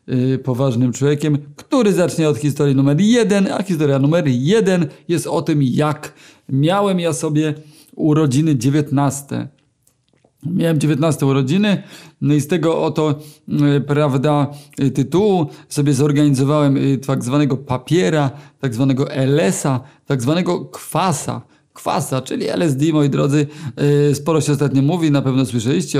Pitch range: 135-155 Hz